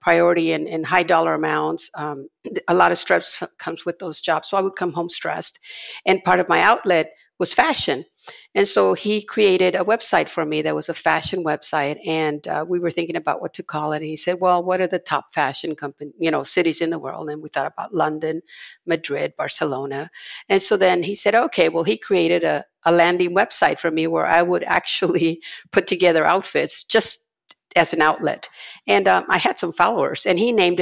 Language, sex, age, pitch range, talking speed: English, female, 50-69, 160-185 Hz, 210 wpm